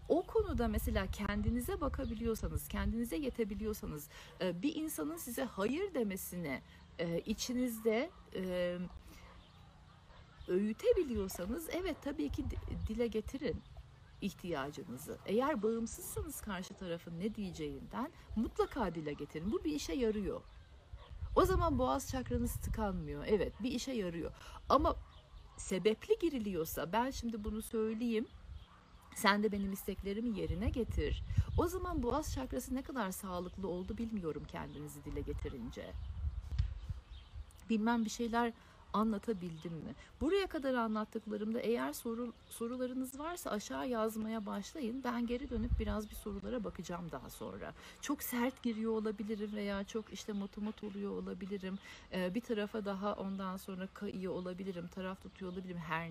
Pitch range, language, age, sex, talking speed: 180-240 Hz, Turkish, 60-79, female, 120 wpm